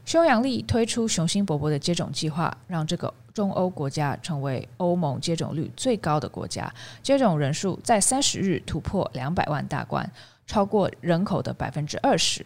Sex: female